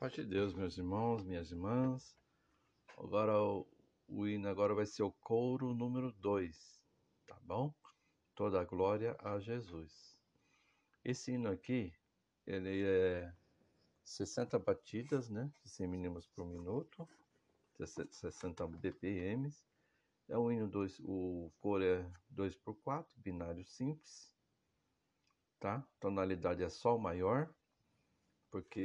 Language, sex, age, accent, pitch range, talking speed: Portuguese, male, 60-79, Brazilian, 95-120 Hz, 120 wpm